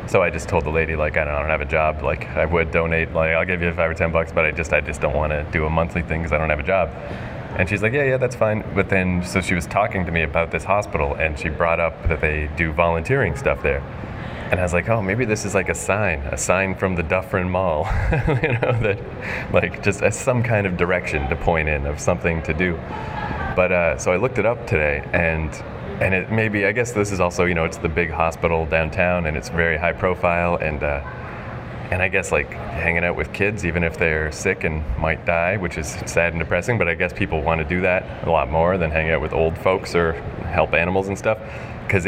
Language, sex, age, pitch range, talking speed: English, male, 30-49, 80-100 Hz, 260 wpm